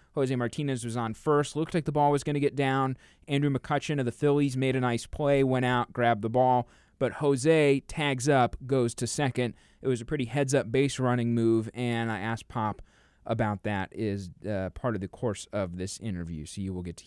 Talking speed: 230 wpm